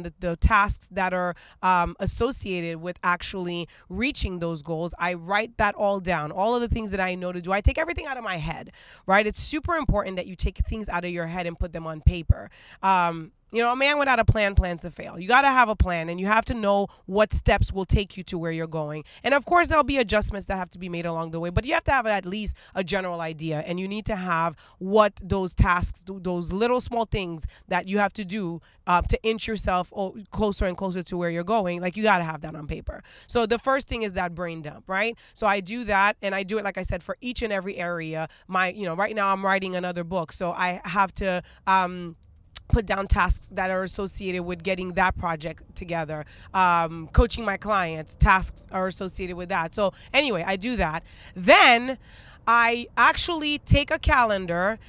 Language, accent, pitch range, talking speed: English, American, 175-215 Hz, 230 wpm